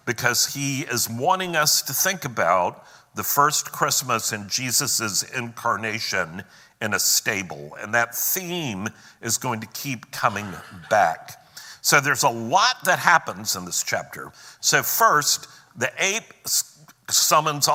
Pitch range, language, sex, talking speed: 115-155 Hz, English, male, 135 wpm